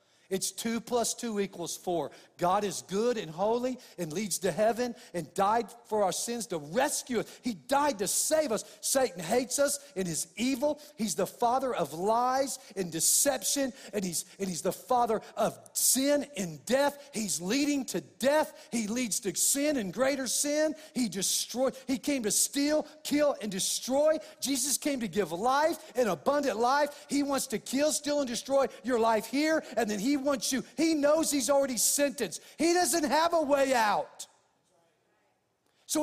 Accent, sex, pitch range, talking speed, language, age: American, male, 190-275 Hz, 175 wpm, English, 50-69